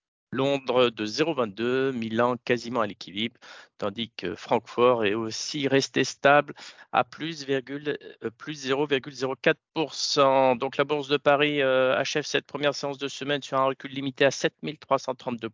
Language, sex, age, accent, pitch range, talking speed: French, male, 50-69, French, 120-145 Hz, 145 wpm